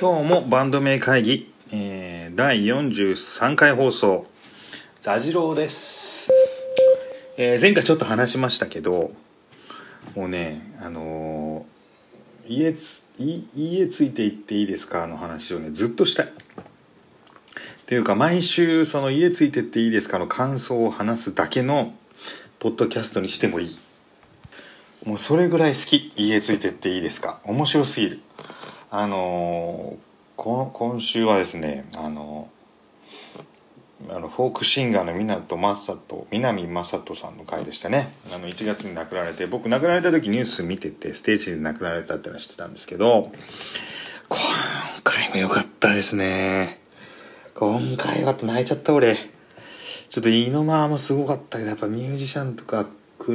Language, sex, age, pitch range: Japanese, male, 40-59, 100-145 Hz